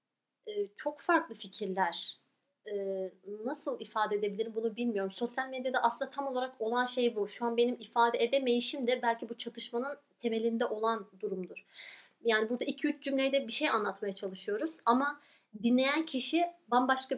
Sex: female